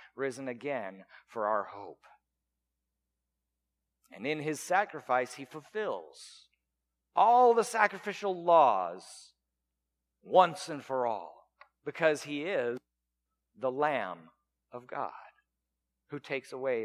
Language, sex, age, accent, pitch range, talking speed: English, male, 50-69, American, 135-215 Hz, 105 wpm